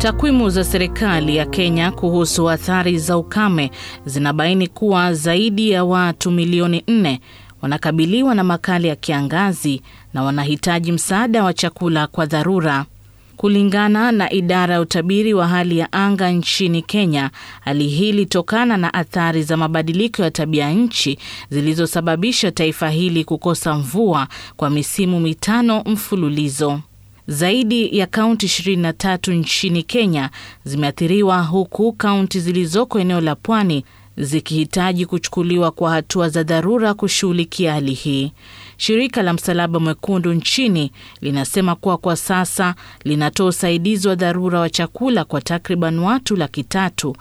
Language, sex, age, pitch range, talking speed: Swahili, female, 30-49, 155-190 Hz, 120 wpm